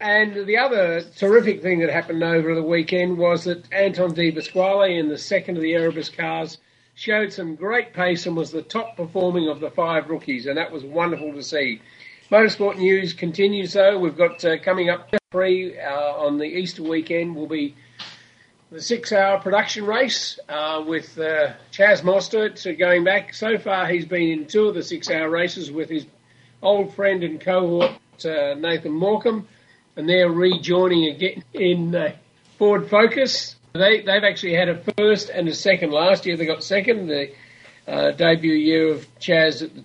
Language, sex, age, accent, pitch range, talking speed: English, male, 50-69, Australian, 155-195 Hz, 175 wpm